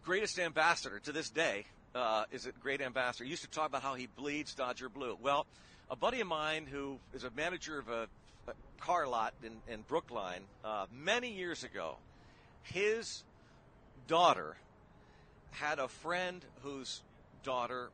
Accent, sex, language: American, male, English